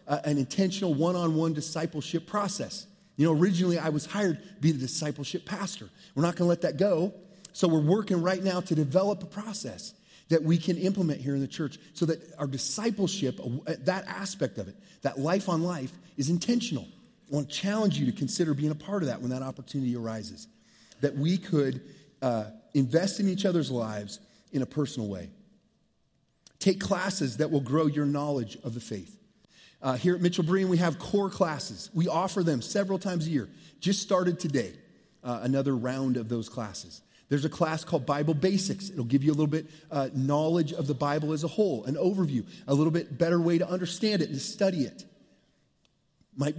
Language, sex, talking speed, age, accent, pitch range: English, male, 195 wpm, 30-49, American, 140-185 Hz